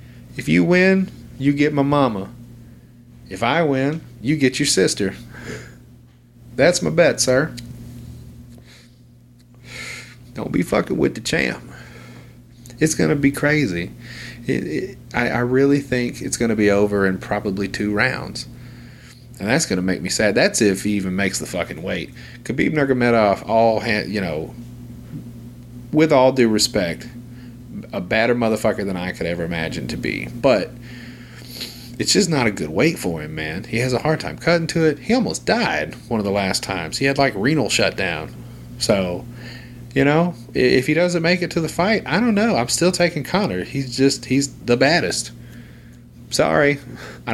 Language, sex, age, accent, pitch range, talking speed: English, male, 30-49, American, 95-135 Hz, 165 wpm